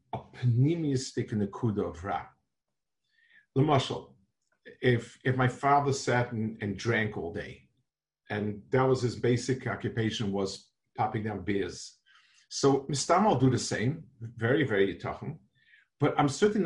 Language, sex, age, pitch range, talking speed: English, male, 50-69, 110-140 Hz, 140 wpm